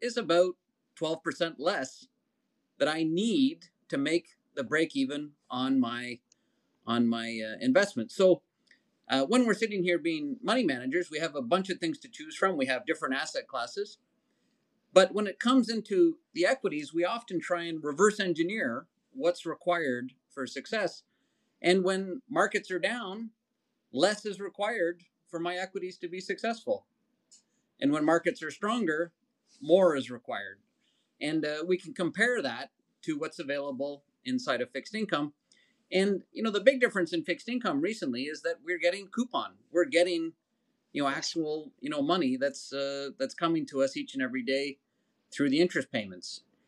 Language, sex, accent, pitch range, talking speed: English, male, American, 155-255 Hz, 165 wpm